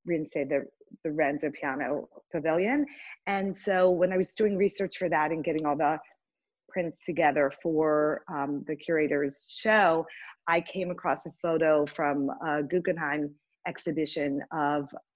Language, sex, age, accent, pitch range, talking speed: English, female, 40-59, American, 150-180 Hz, 145 wpm